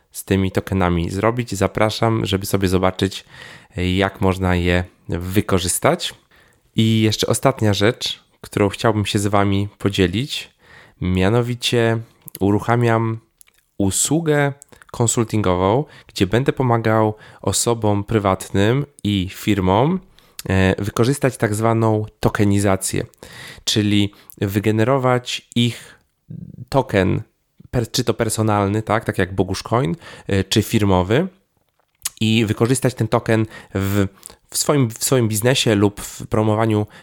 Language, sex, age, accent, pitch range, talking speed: Polish, male, 20-39, native, 95-115 Hz, 105 wpm